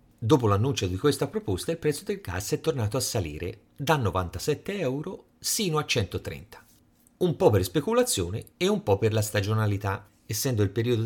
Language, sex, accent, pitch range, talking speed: Italian, male, native, 100-145 Hz, 175 wpm